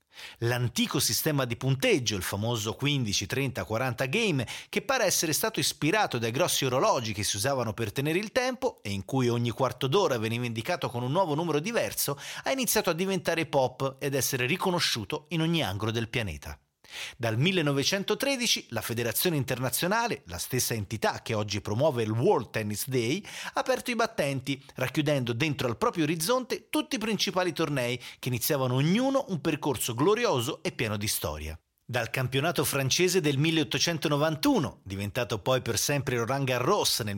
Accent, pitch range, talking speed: native, 115-170 Hz, 165 wpm